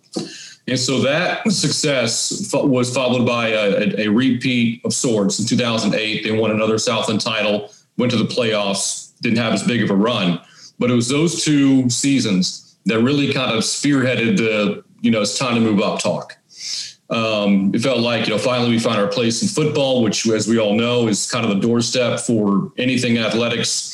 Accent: American